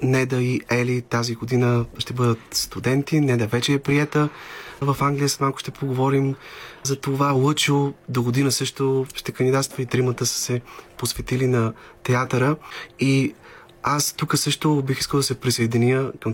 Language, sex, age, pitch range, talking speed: Bulgarian, male, 30-49, 120-135 Hz, 160 wpm